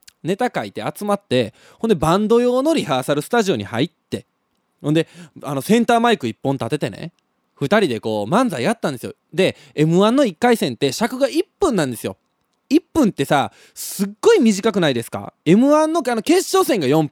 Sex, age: male, 20-39